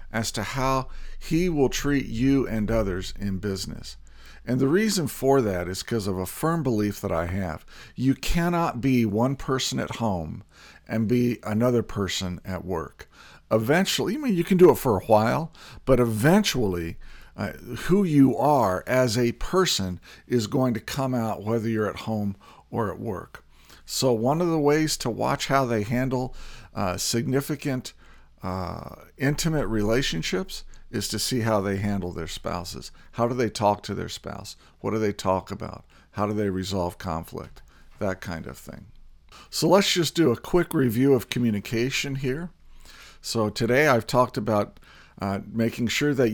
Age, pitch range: 50-69, 100-140 Hz